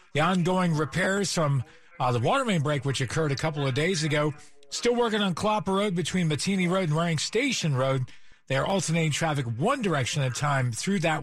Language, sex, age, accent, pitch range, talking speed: English, male, 40-59, American, 135-175 Hz, 210 wpm